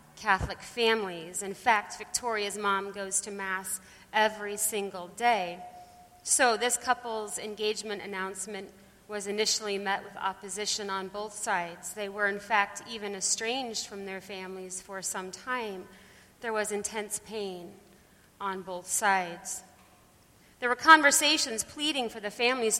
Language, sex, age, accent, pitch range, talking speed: English, female, 40-59, American, 195-240 Hz, 135 wpm